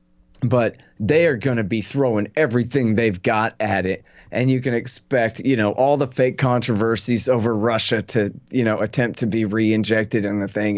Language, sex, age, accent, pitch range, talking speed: English, male, 30-49, American, 110-135 Hz, 190 wpm